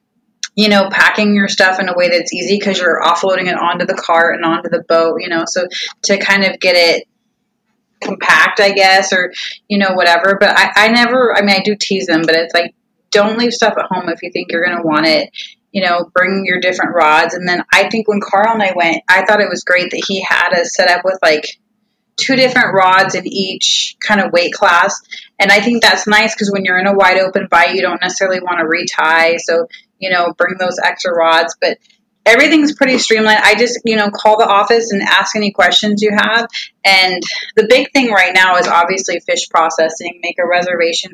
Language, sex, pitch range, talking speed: English, female, 175-215 Hz, 225 wpm